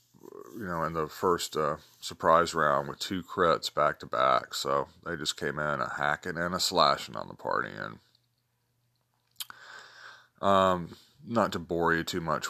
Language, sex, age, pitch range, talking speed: English, male, 40-59, 75-115 Hz, 170 wpm